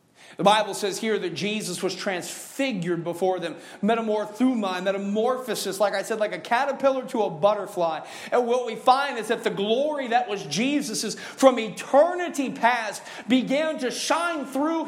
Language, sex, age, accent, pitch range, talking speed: English, male, 40-59, American, 150-220 Hz, 155 wpm